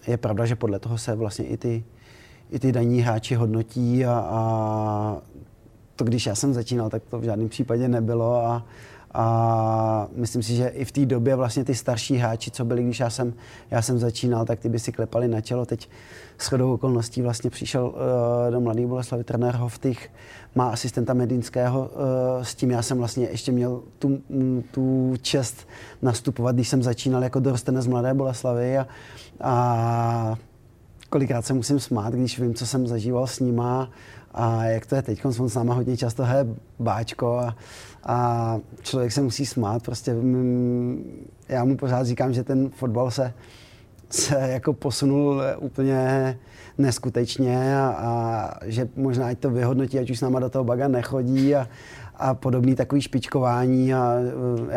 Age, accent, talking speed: 30-49, native, 175 wpm